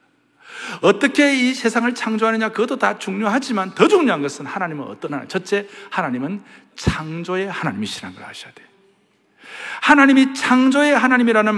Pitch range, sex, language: 195-265 Hz, male, Korean